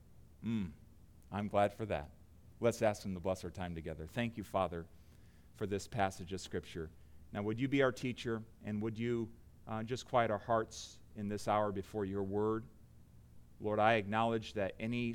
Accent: American